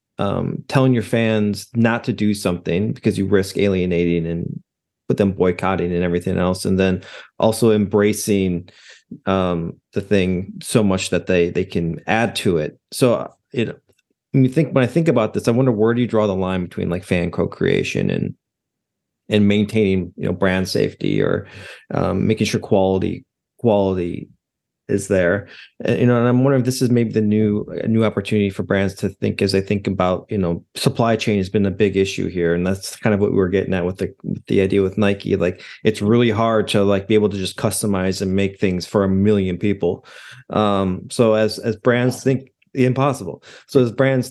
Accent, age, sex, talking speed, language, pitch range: American, 30-49, male, 200 wpm, English, 95-110 Hz